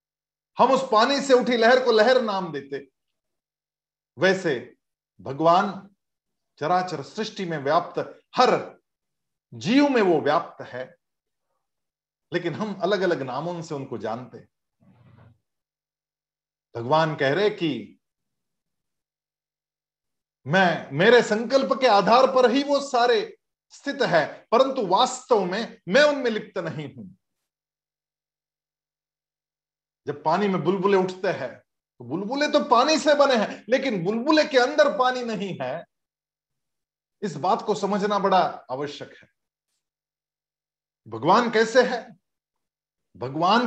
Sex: male